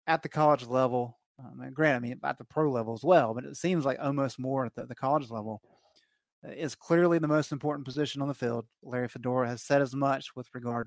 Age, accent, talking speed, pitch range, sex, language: 30-49, American, 245 wpm, 120-150 Hz, male, English